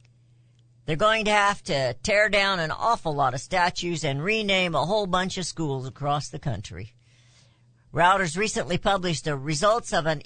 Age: 50-69